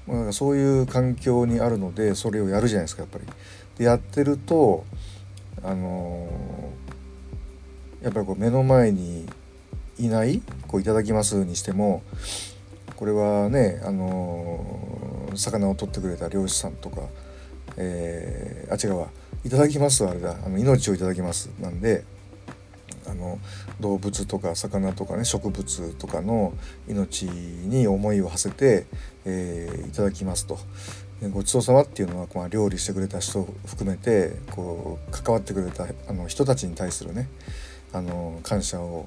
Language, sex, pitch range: Japanese, male, 90-105 Hz